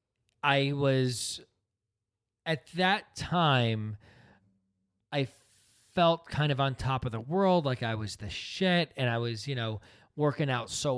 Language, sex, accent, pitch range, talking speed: English, male, American, 115-155 Hz, 150 wpm